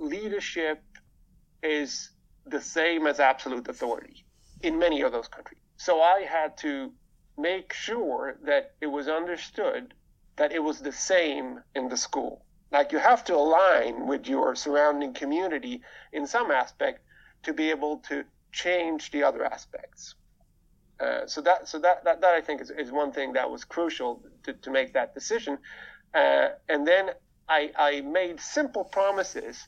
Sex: male